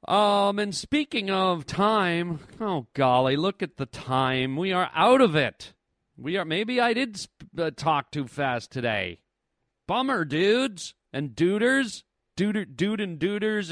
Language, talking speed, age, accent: English, 155 wpm, 40-59, American